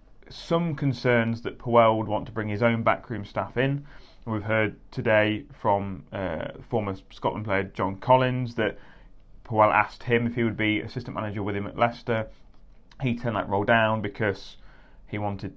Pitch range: 100-120 Hz